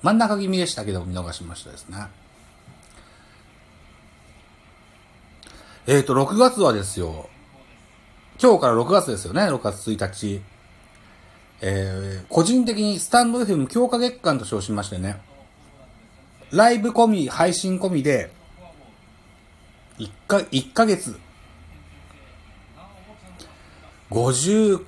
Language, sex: Japanese, male